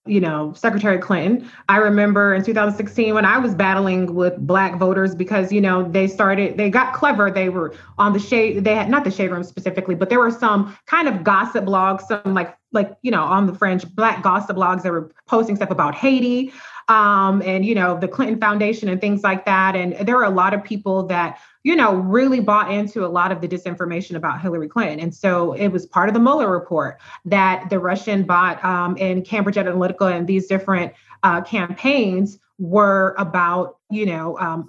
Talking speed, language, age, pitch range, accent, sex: 205 wpm, English, 30-49, 185-215 Hz, American, female